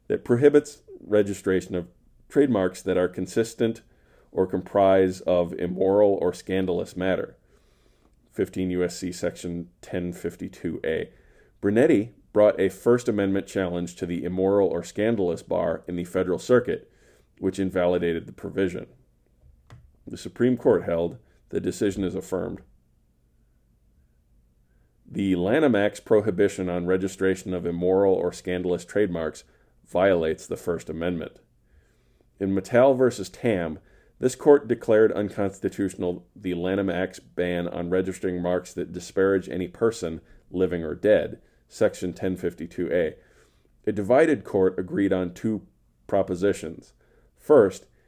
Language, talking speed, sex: English, 115 wpm, male